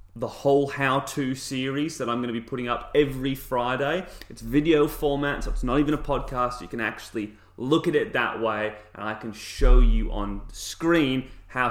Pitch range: 105-150 Hz